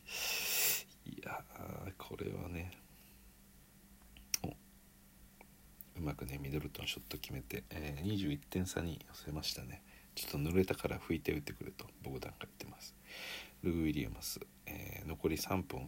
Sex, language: male, Japanese